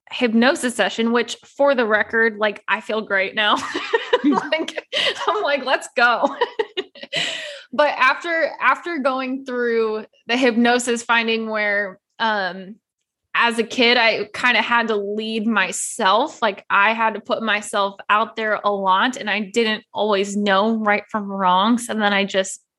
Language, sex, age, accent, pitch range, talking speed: English, female, 10-29, American, 205-245 Hz, 150 wpm